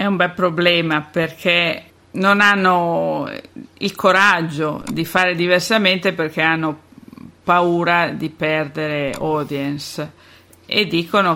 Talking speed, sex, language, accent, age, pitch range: 105 wpm, female, Italian, native, 50-69, 155-180 Hz